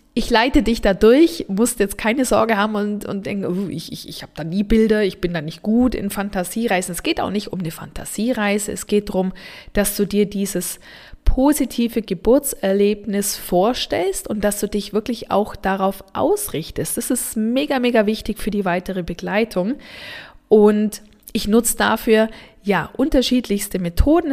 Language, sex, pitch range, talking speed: German, female, 185-230 Hz, 170 wpm